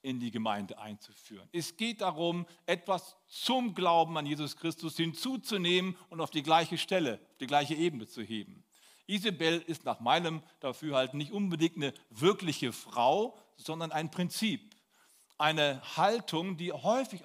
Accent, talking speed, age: German, 145 wpm, 40-59